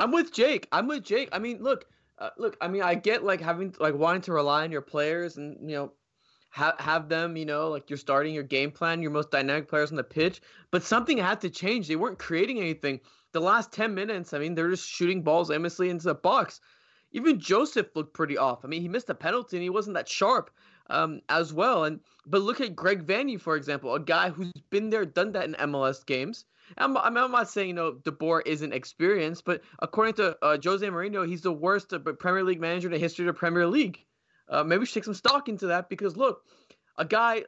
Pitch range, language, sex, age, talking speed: 160-225 Hz, English, male, 20-39, 235 wpm